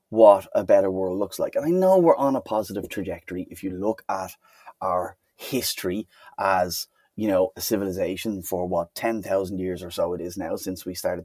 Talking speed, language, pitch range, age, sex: 195 wpm, English, 95-130 Hz, 30-49, male